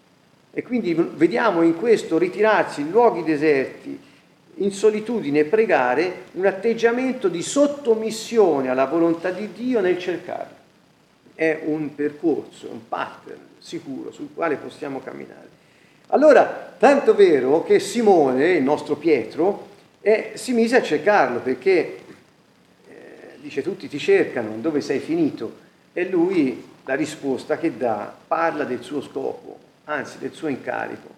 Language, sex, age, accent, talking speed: Italian, male, 50-69, native, 130 wpm